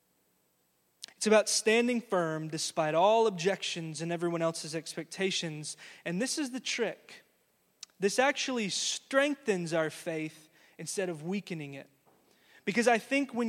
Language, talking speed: English, 130 wpm